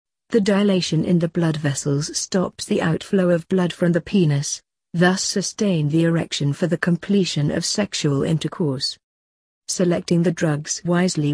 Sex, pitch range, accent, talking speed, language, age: female, 160-195 Hz, British, 150 wpm, English, 50-69